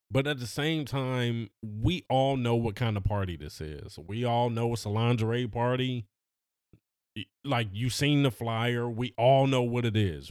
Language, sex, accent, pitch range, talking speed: English, male, American, 105-135 Hz, 185 wpm